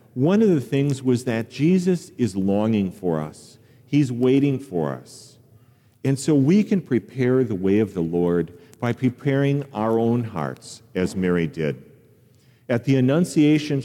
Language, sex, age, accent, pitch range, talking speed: English, male, 50-69, American, 90-130 Hz, 155 wpm